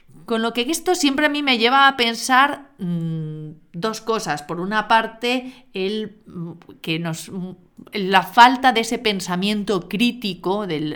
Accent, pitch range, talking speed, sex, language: Spanish, 175-215 Hz, 150 wpm, female, Spanish